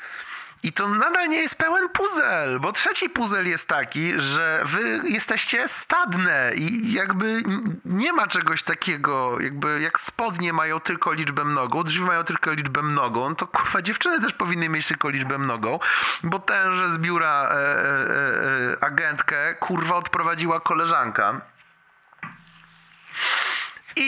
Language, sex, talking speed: Polish, male, 140 wpm